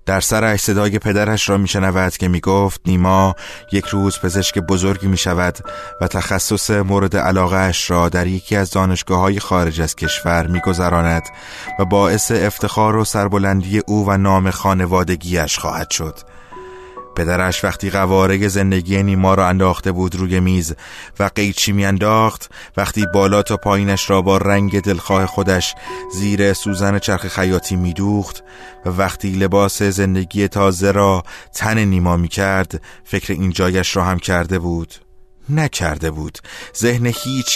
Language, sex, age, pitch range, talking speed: Persian, male, 20-39, 95-105 Hz, 135 wpm